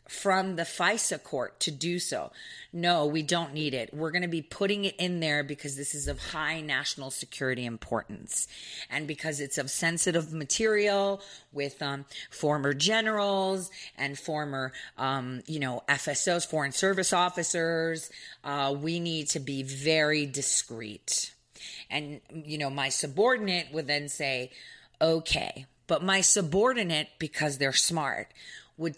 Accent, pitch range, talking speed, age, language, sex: American, 150-195 Hz, 145 wpm, 30-49, English, female